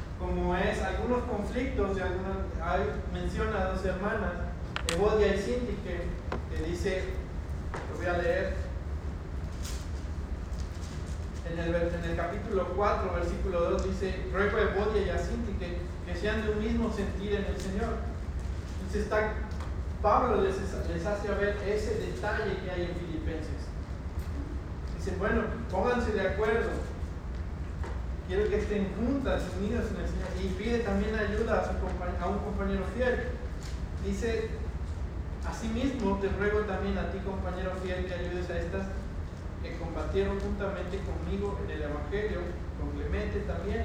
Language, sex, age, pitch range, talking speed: Spanish, male, 40-59, 75-85 Hz, 140 wpm